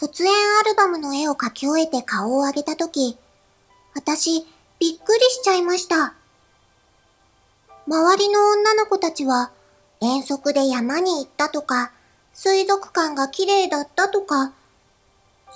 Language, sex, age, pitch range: Japanese, male, 40-59, 260-375 Hz